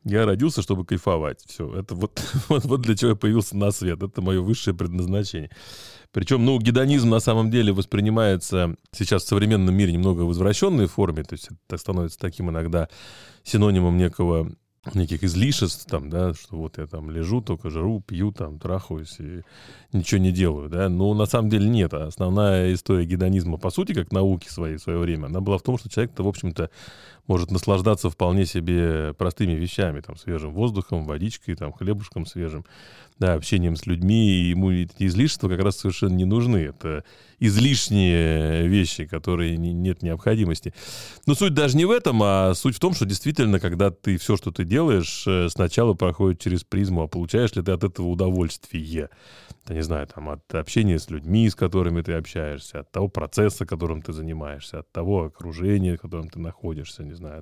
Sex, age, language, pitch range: male, 30-49, Russian, 85-105 Hz